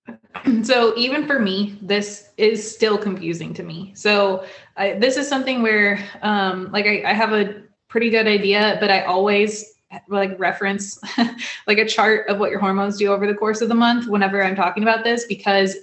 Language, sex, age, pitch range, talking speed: English, female, 20-39, 190-220 Hz, 190 wpm